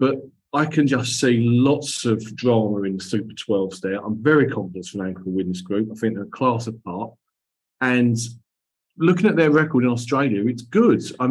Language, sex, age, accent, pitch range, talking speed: English, male, 40-59, British, 110-135 Hz, 185 wpm